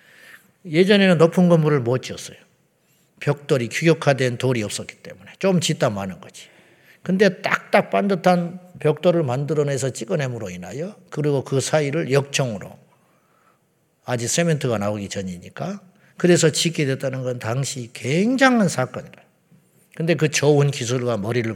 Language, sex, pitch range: Korean, male, 125-180 Hz